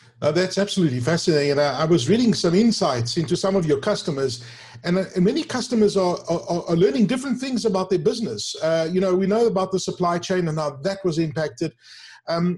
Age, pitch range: 50-69, 165-205 Hz